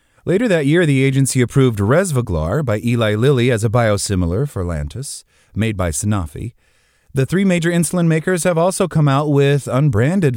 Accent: American